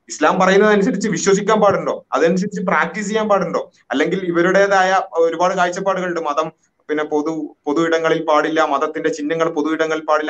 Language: Malayalam